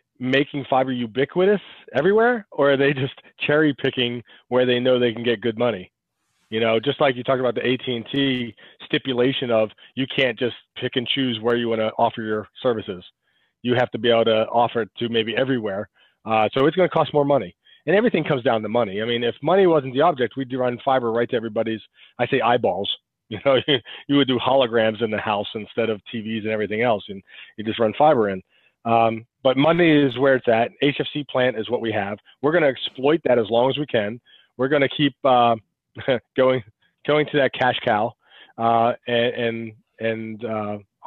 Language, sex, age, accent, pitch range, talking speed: English, male, 30-49, American, 115-135 Hz, 205 wpm